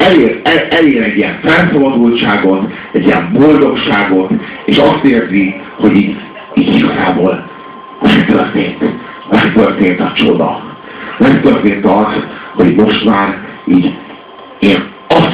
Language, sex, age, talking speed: Hungarian, male, 60-79, 115 wpm